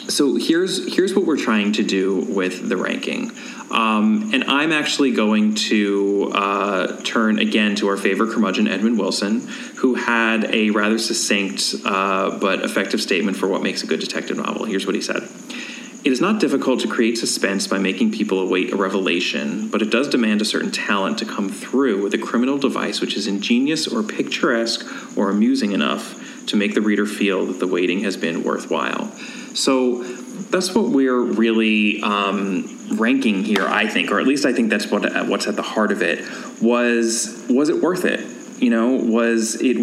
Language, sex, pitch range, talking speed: English, male, 100-125 Hz, 185 wpm